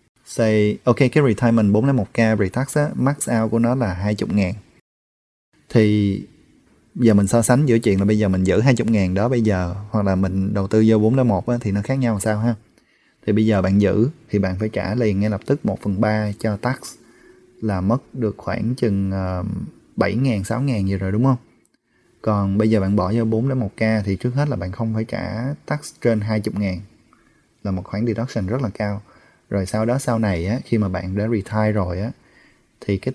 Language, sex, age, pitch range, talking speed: Vietnamese, male, 20-39, 100-125 Hz, 205 wpm